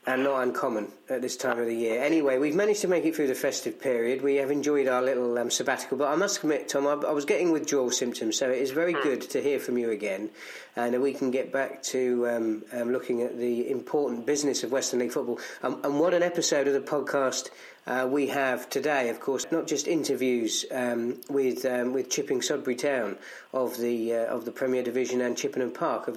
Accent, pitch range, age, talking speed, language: British, 125-150 Hz, 40-59, 230 wpm, English